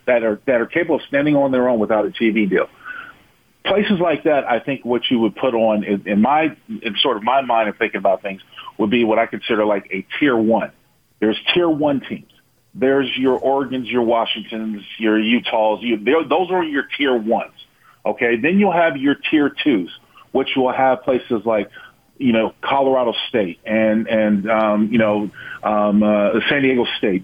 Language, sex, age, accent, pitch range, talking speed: English, male, 40-59, American, 110-140 Hz, 195 wpm